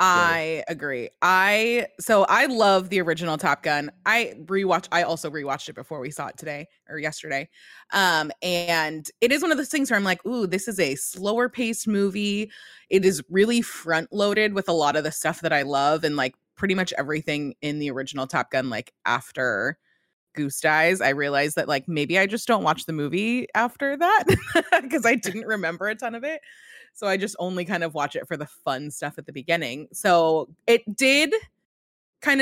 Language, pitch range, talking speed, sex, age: English, 155-225 Hz, 200 wpm, female, 20-39